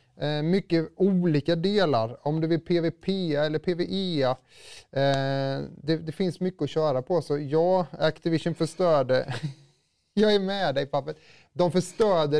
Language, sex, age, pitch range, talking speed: Swedish, male, 30-49, 130-170 Hz, 130 wpm